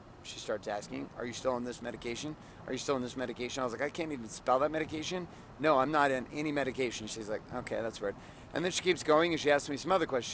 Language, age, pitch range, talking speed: English, 30-49, 125-160 Hz, 275 wpm